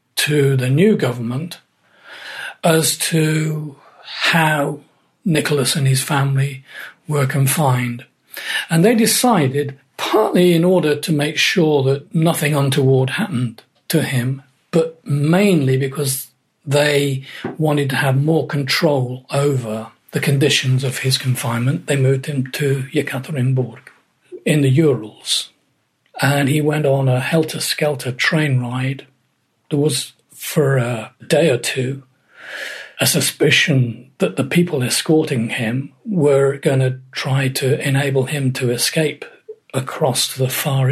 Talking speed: 125 wpm